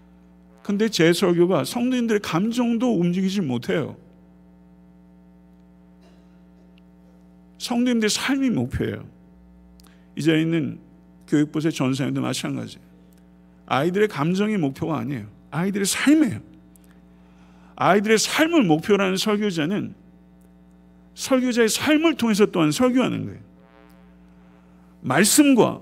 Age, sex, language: 50-69, male, Korean